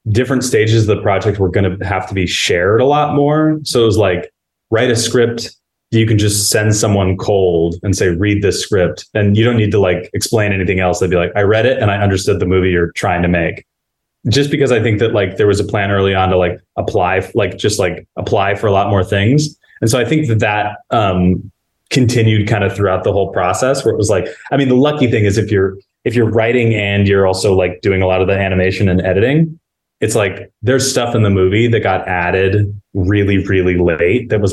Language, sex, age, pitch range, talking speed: English, male, 20-39, 95-115 Hz, 240 wpm